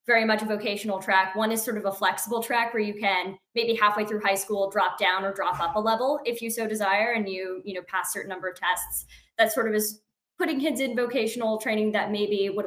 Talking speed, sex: 250 wpm, female